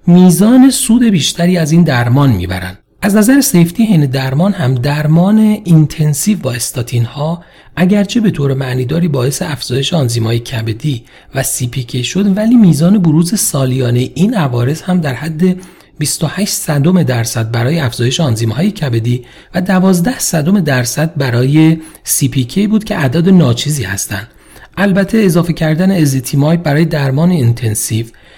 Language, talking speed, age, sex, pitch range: Persian, 130 wpm, 40-59, male, 120-175 Hz